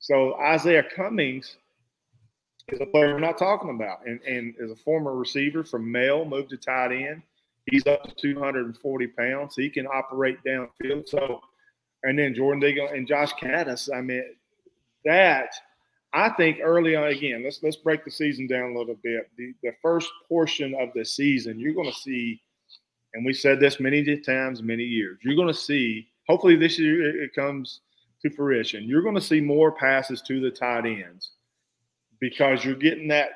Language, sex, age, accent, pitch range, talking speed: English, male, 40-59, American, 125-145 Hz, 185 wpm